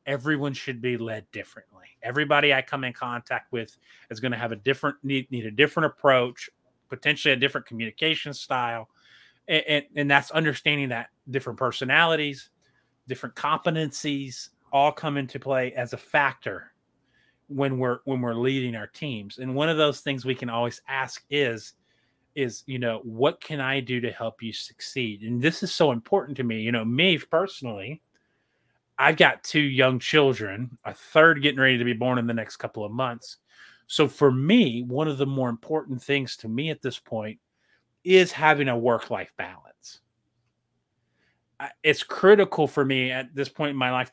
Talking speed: 175 wpm